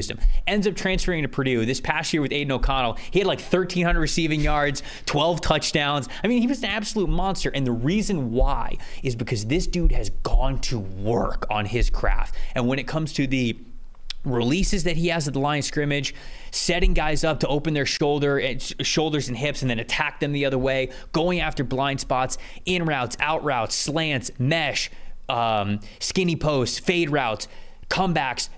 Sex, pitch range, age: male, 125-165 Hz, 20-39